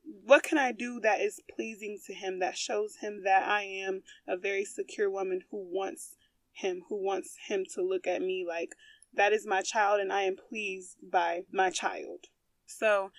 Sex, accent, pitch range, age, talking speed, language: female, American, 200-275 Hz, 20-39, 190 wpm, English